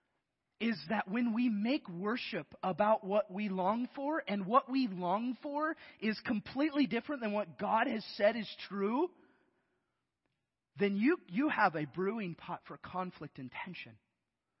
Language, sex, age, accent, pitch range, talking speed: English, male, 30-49, American, 200-275 Hz, 150 wpm